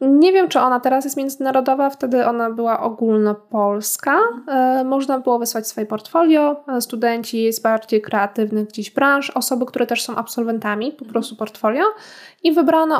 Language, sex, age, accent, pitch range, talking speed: Polish, female, 20-39, native, 215-260 Hz, 150 wpm